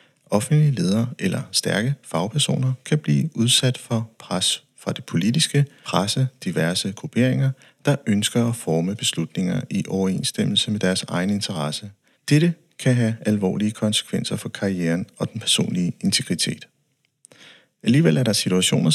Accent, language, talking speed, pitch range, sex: native, Danish, 135 wpm, 100-130 Hz, male